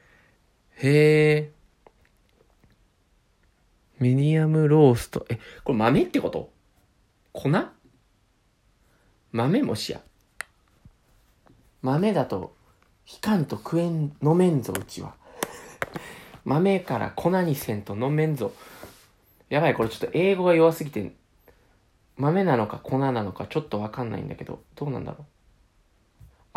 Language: Japanese